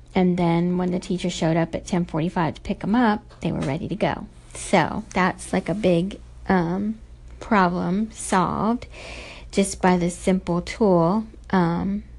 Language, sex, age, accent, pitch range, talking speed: English, female, 40-59, American, 170-200 Hz, 160 wpm